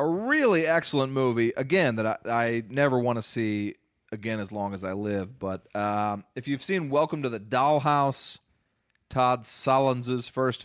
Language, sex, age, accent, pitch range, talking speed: English, male, 30-49, American, 105-135 Hz, 170 wpm